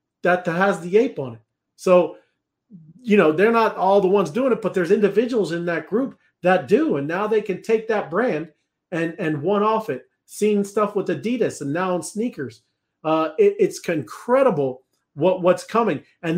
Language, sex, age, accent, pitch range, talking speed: English, male, 40-59, American, 150-200 Hz, 185 wpm